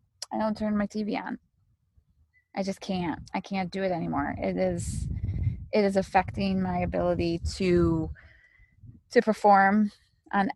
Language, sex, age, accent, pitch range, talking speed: English, female, 20-39, American, 170-200 Hz, 140 wpm